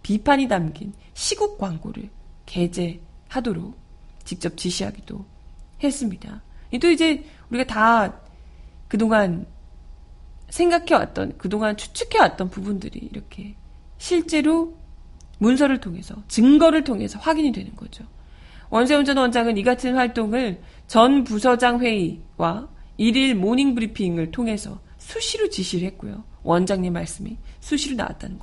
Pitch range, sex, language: 185-260 Hz, female, Korean